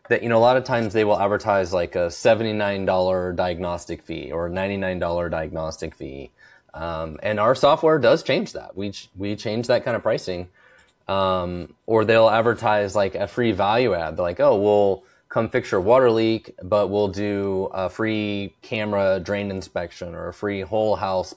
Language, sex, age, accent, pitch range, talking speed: English, male, 20-39, American, 95-110 Hz, 185 wpm